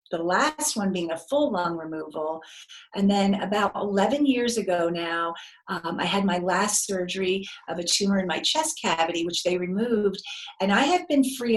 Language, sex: English, female